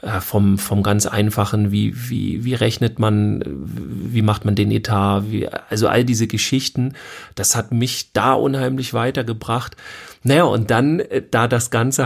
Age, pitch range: 40-59, 105-125 Hz